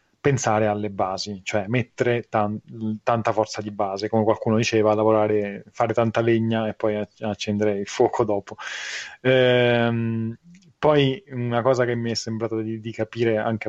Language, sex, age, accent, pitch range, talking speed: Italian, male, 30-49, native, 110-130 Hz, 155 wpm